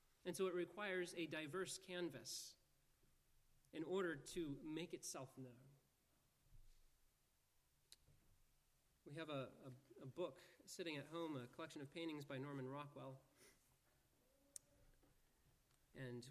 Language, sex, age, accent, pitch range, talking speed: English, male, 30-49, American, 135-175 Hz, 110 wpm